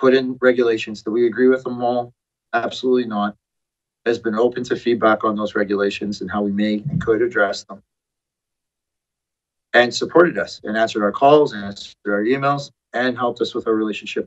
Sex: male